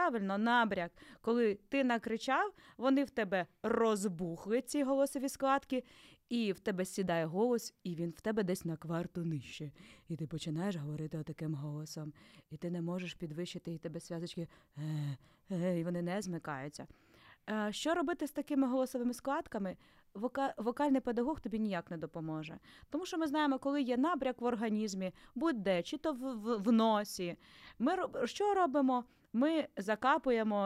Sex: female